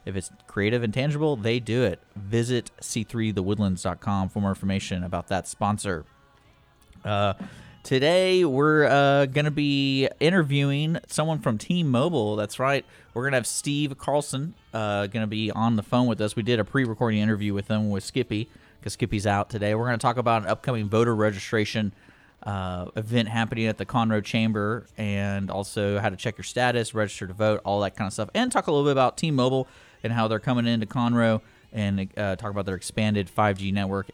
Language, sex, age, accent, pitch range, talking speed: English, male, 30-49, American, 105-130 Hz, 190 wpm